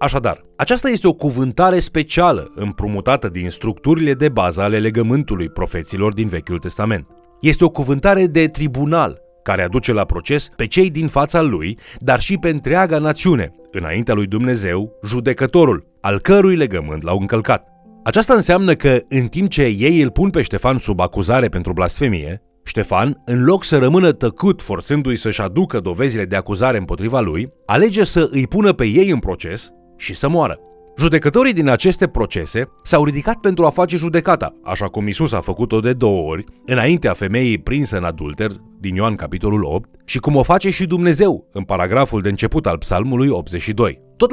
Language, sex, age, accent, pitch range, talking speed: Romanian, male, 30-49, native, 100-165 Hz, 170 wpm